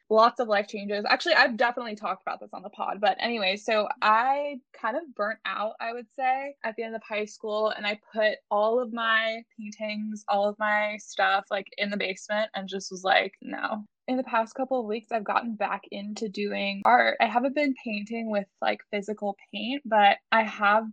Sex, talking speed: female, 210 wpm